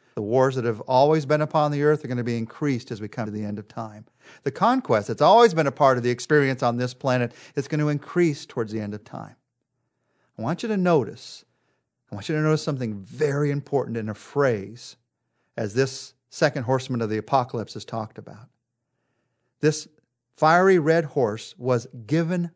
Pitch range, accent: 120-150 Hz, American